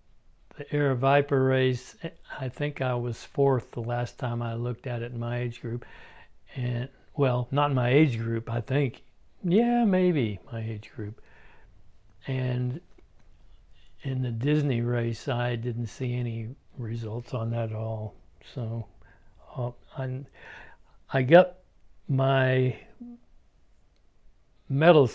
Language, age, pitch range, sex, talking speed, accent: English, 60-79, 115-135 Hz, male, 130 wpm, American